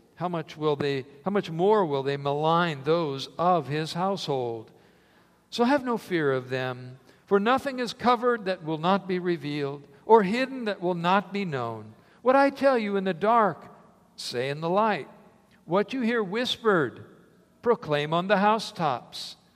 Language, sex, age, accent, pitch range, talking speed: English, male, 60-79, American, 140-205 Hz, 170 wpm